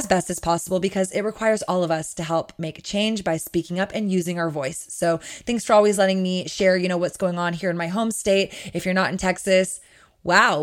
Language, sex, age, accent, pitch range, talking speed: English, female, 20-39, American, 175-210 Hz, 250 wpm